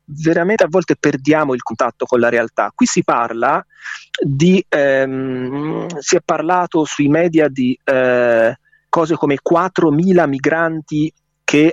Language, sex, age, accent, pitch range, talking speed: Italian, male, 30-49, native, 125-160 Hz, 135 wpm